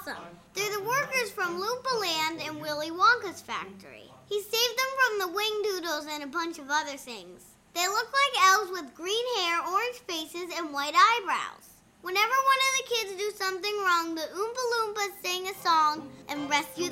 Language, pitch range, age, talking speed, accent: English, 325-445 Hz, 10-29, 180 wpm, American